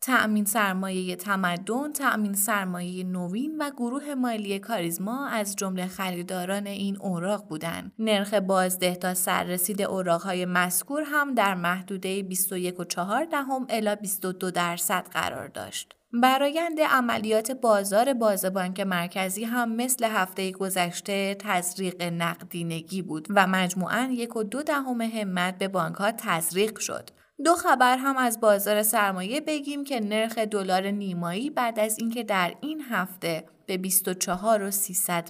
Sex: female